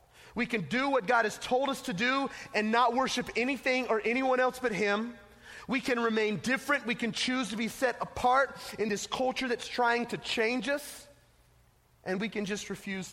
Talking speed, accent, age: 195 wpm, American, 30-49